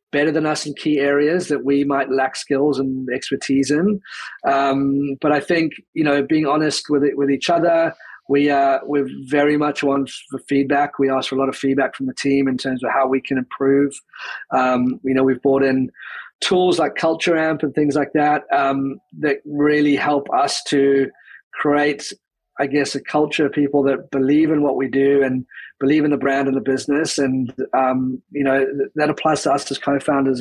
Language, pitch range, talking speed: English, 135-150 Hz, 205 wpm